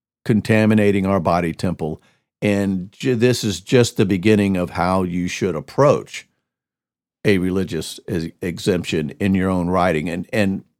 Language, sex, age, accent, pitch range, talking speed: English, male, 50-69, American, 95-115 Hz, 135 wpm